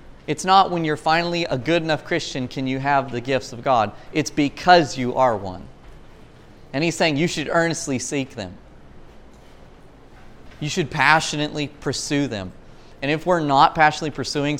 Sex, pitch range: male, 120-160 Hz